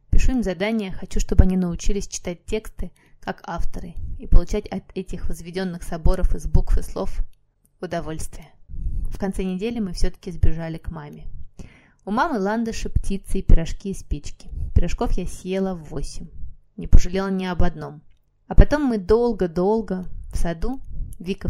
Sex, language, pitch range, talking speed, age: female, Russian, 175-210 Hz, 150 wpm, 20-39